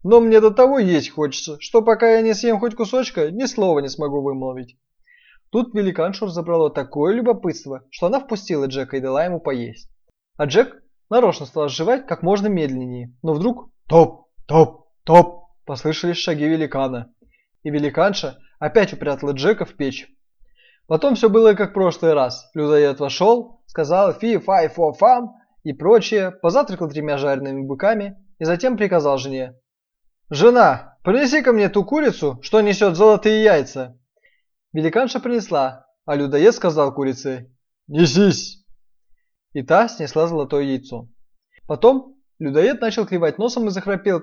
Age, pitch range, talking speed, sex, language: 20-39, 145-225 Hz, 145 wpm, male, Russian